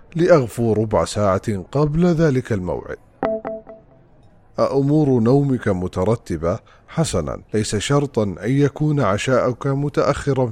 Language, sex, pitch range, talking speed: English, male, 105-145 Hz, 90 wpm